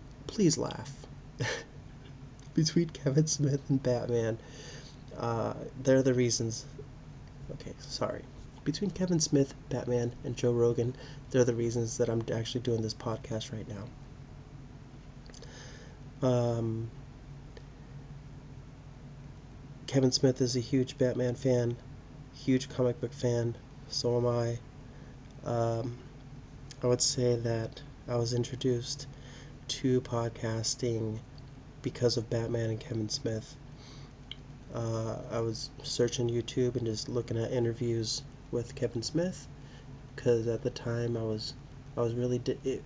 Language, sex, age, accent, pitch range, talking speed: English, male, 30-49, American, 120-140 Hz, 120 wpm